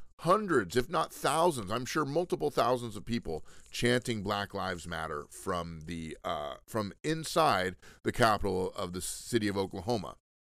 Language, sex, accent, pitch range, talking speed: English, male, American, 95-145 Hz, 150 wpm